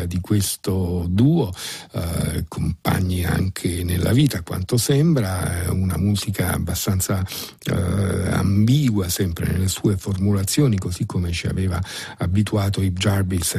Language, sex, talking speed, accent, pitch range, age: Italian, male, 115 wpm, native, 90-110 Hz, 50-69